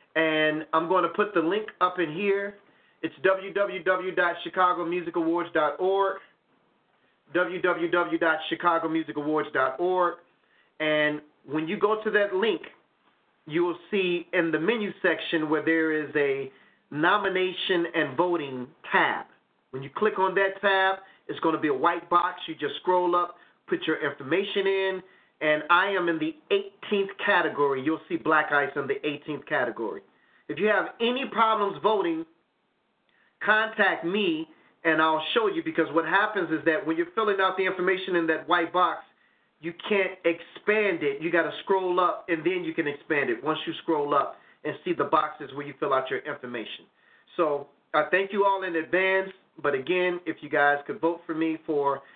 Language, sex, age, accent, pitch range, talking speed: English, male, 40-59, American, 160-195 Hz, 165 wpm